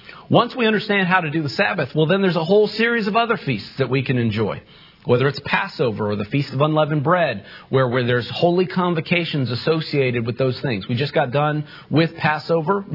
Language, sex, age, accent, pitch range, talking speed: English, male, 40-59, American, 130-170 Hz, 210 wpm